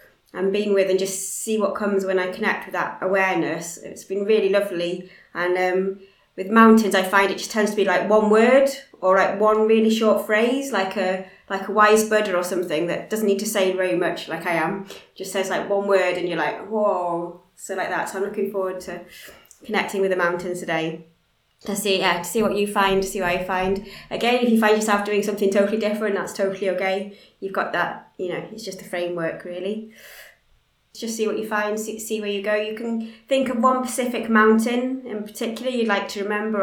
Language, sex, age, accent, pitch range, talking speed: English, female, 20-39, British, 185-215 Hz, 225 wpm